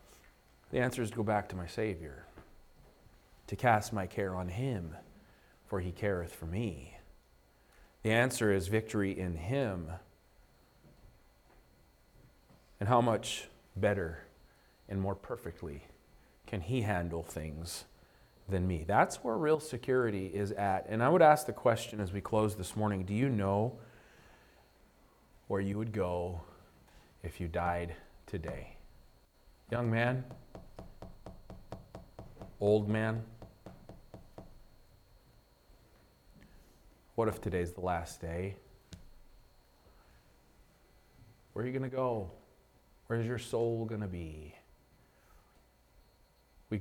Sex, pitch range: male, 85-110 Hz